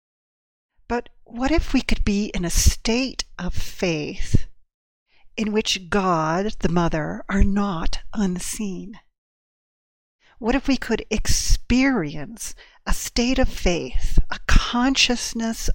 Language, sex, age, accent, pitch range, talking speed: English, female, 50-69, American, 180-235 Hz, 115 wpm